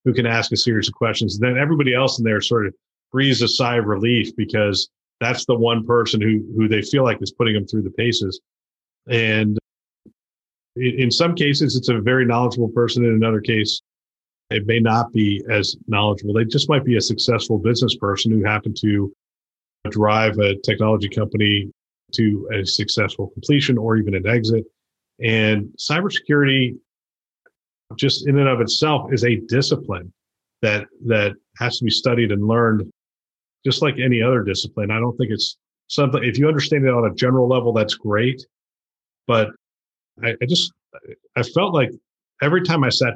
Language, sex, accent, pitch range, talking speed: English, male, American, 105-125 Hz, 175 wpm